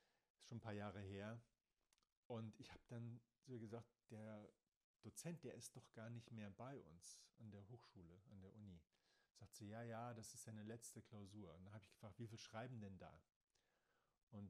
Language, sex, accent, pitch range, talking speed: German, male, German, 100-120 Hz, 200 wpm